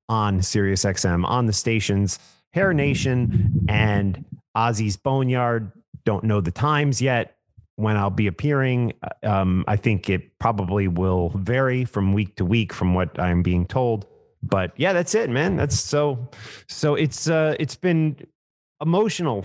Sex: male